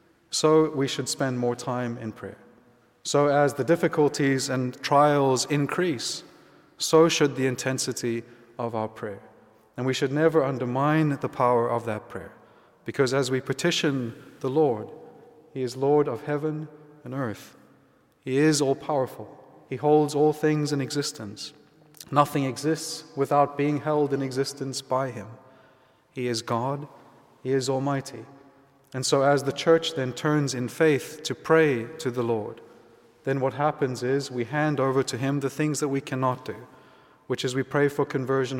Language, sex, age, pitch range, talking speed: English, male, 30-49, 125-145 Hz, 165 wpm